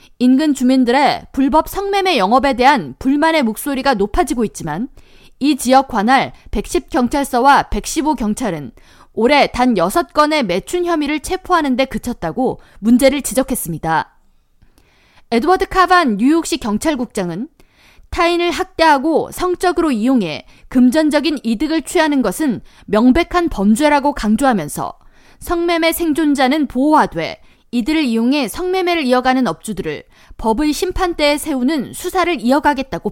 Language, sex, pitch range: Korean, female, 235-330 Hz